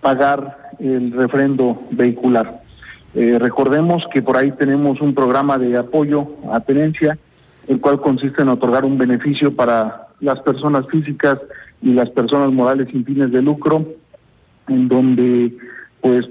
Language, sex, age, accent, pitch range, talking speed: Spanish, male, 50-69, Mexican, 130-150 Hz, 140 wpm